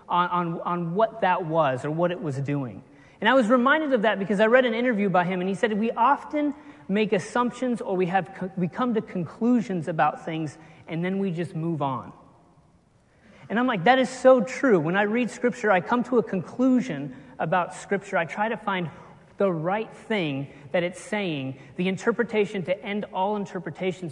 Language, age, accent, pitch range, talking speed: English, 30-49, American, 145-210 Hz, 200 wpm